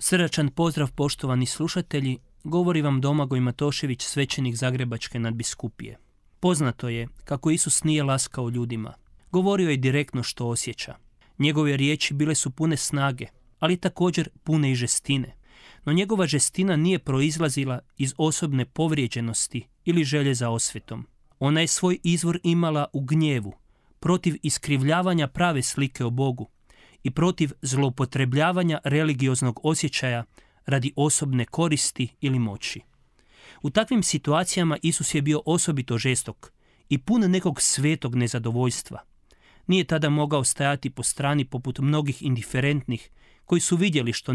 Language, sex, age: Croatian, male, 30-49